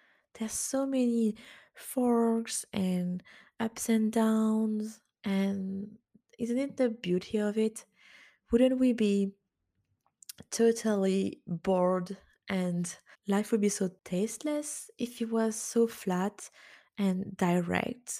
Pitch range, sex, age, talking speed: 185-230 Hz, female, 20-39, 110 wpm